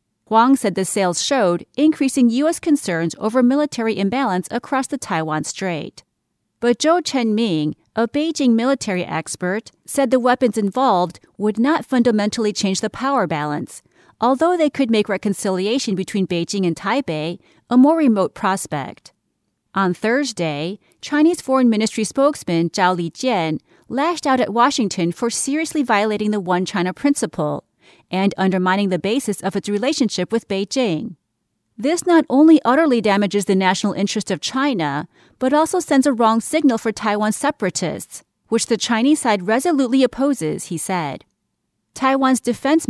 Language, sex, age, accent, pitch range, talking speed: English, female, 30-49, American, 190-270 Hz, 145 wpm